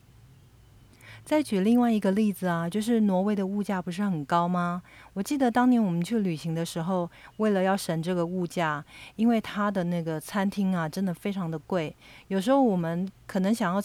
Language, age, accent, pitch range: Chinese, 40-59, native, 170-205 Hz